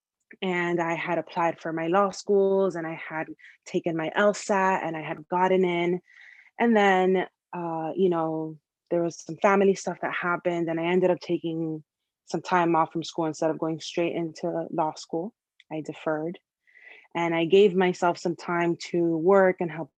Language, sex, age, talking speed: English, female, 20-39, 180 wpm